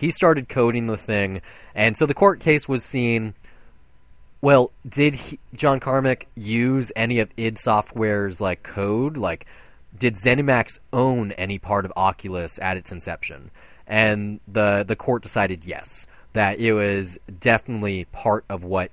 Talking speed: 150 wpm